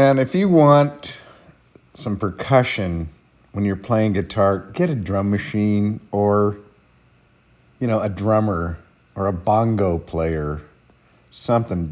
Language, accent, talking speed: English, American, 120 wpm